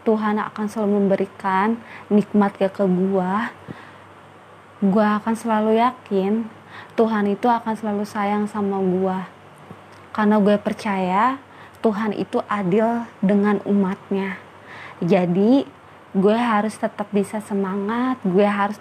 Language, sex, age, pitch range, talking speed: Indonesian, female, 20-39, 190-220 Hz, 110 wpm